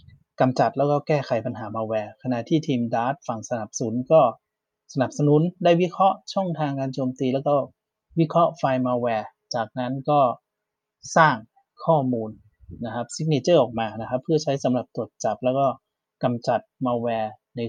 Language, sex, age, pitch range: Thai, male, 30-49, 125-155 Hz